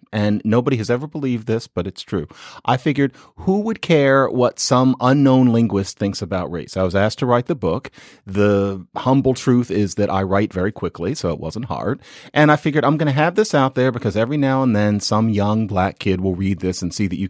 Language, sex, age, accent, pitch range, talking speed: English, male, 40-59, American, 105-135 Hz, 230 wpm